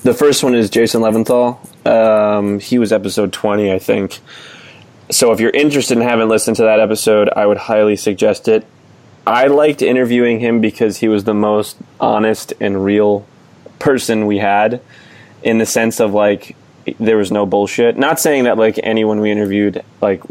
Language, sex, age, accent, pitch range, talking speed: English, male, 20-39, American, 105-115 Hz, 175 wpm